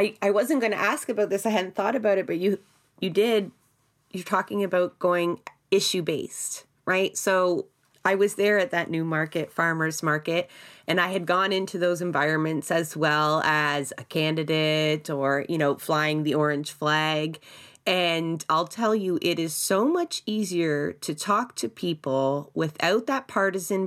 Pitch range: 155-190 Hz